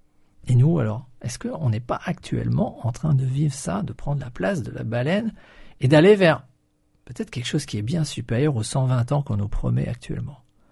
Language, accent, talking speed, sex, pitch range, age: French, French, 220 wpm, male, 120-155 Hz, 50-69